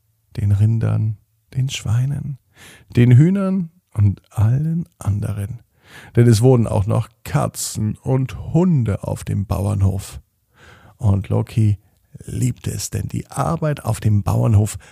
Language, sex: German, male